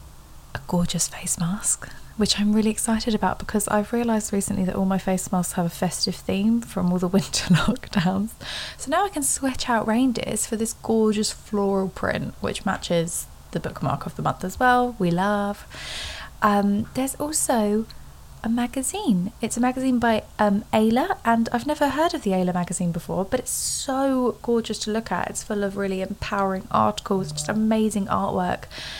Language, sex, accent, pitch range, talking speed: English, female, British, 185-230 Hz, 180 wpm